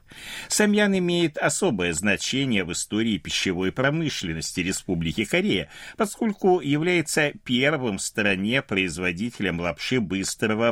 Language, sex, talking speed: Russian, male, 100 wpm